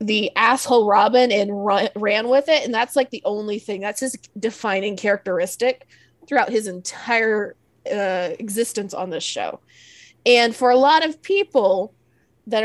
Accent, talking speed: American, 155 wpm